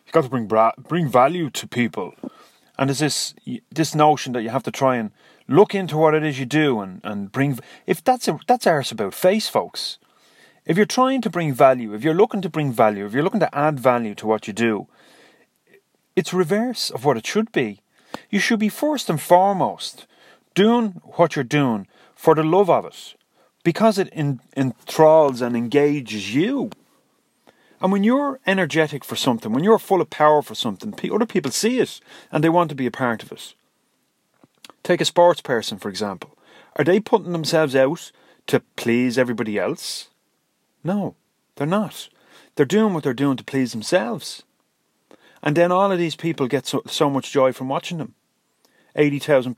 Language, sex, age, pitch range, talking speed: English, male, 30-49, 125-185 Hz, 190 wpm